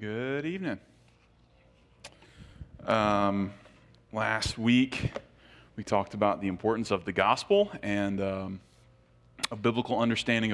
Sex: male